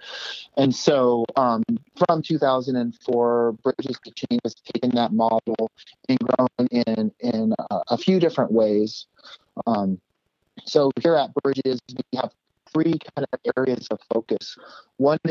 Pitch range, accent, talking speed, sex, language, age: 120-145 Hz, American, 135 wpm, male, English, 30-49